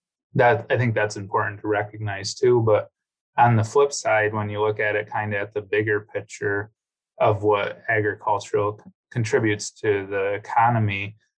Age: 20-39